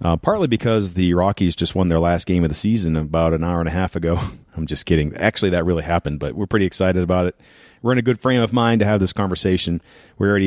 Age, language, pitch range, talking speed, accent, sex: 40-59, English, 85-110 Hz, 265 wpm, American, male